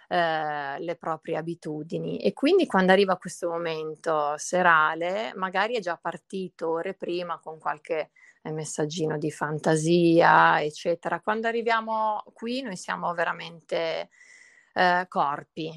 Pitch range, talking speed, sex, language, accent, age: 165-195 Hz, 110 wpm, female, Italian, native, 30-49